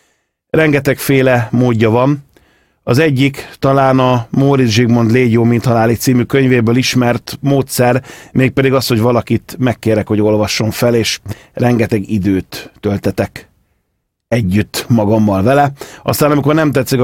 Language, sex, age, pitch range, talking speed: Hungarian, male, 30-49, 110-140 Hz, 130 wpm